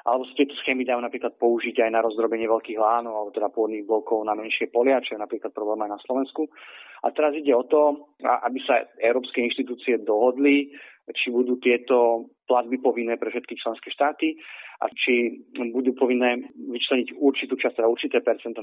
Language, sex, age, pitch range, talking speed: Slovak, male, 30-49, 115-125 Hz, 175 wpm